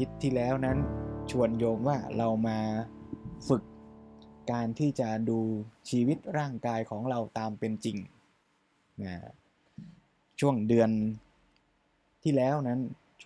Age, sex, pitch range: 20-39, male, 115-135 Hz